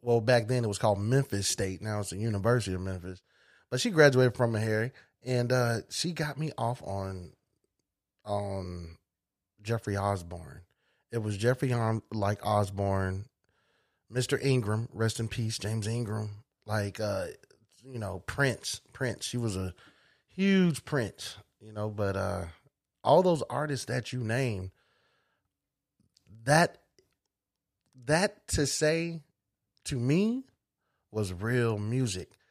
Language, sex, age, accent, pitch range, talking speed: English, male, 30-49, American, 105-130 Hz, 135 wpm